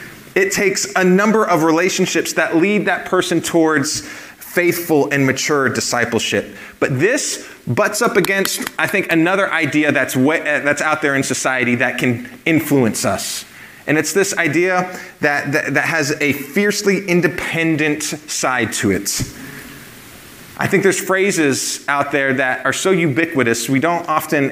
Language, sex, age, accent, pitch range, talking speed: English, male, 30-49, American, 140-190 Hz, 145 wpm